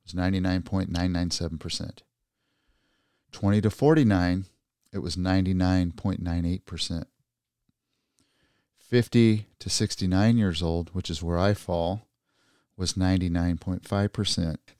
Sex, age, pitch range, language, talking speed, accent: male, 40-59, 85-95 Hz, English, 75 wpm, American